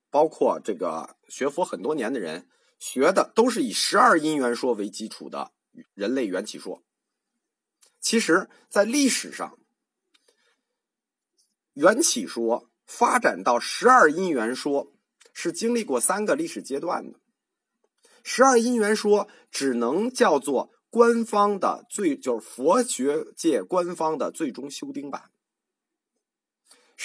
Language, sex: Chinese, male